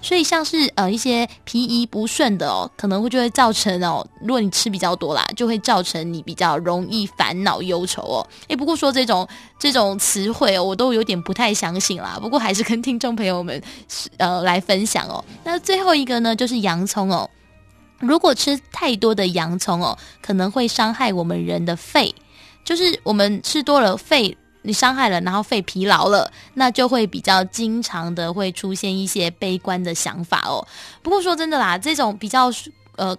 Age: 10-29